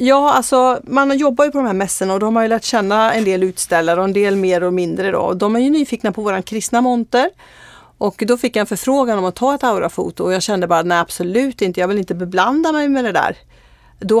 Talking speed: 255 wpm